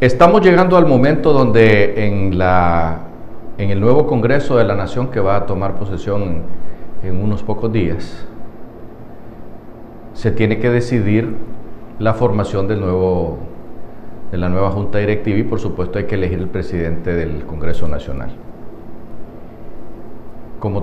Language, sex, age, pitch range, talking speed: Spanish, male, 50-69, 100-115 Hz, 140 wpm